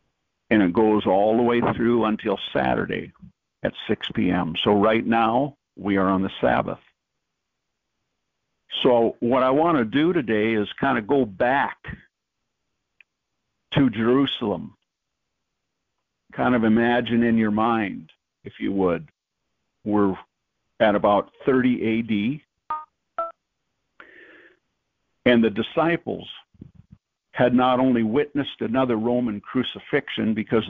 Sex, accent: male, American